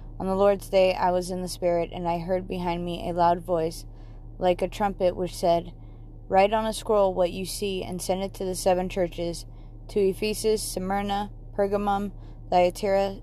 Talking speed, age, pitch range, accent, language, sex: 185 wpm, 20-39, 170-195 Hz, American, English, female